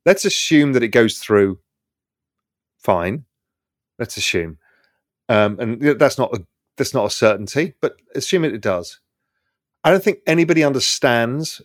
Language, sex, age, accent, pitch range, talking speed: English, male, 30-49, British, 115-150 Hz, 145 wpm